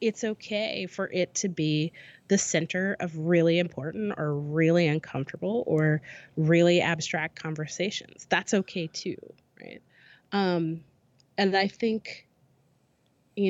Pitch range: 155-180 Hz